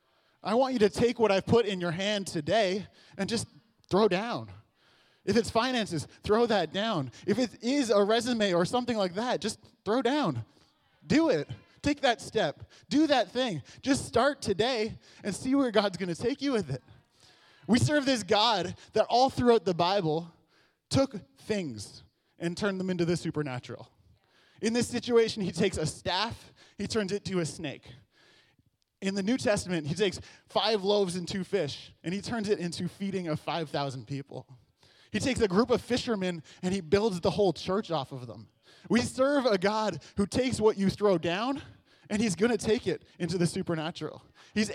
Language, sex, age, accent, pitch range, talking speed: English, male, 20-39, American, 165-225 Hz, 190 wpm